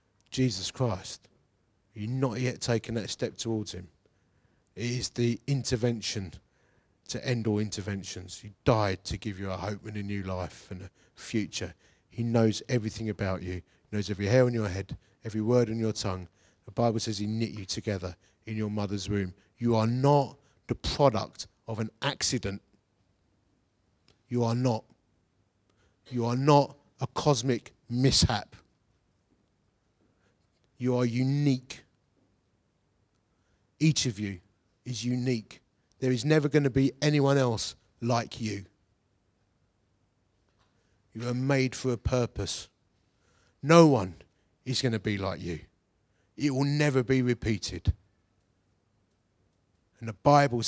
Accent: British